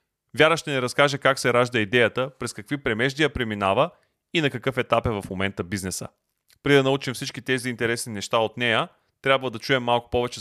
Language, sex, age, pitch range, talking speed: Bulgarian, male, 30-49, 110-135 Hz, 195 wpm